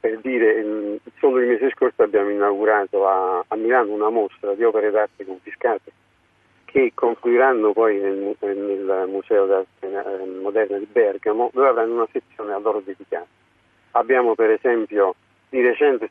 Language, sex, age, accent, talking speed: Italian, male, 50-69, native, 145 wpm